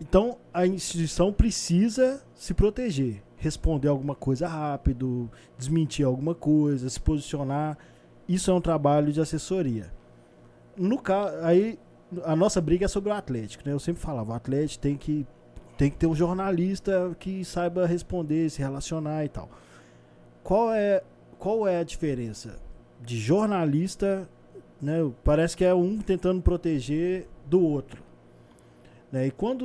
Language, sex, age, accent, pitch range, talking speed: Portuguese, male, 20-39, Brazilian, 125-175 Hz, 140 wpm